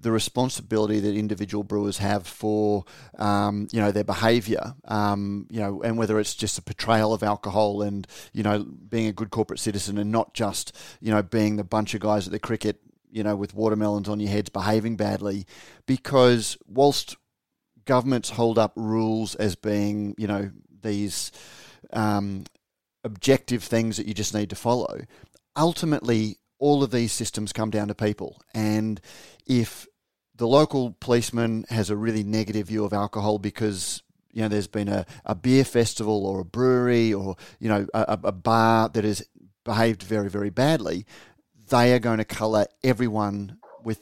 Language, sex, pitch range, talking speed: English, male, 105-115 Hz, 170 wpm